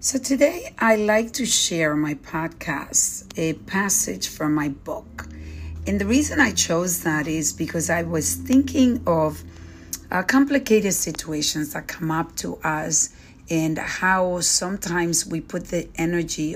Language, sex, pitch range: English, female, 155-195 Hz